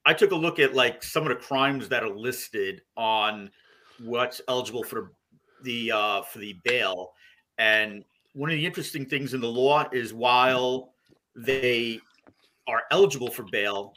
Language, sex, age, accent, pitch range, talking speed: English, male, 40-59, American, 115-145 Hz, 165 wpm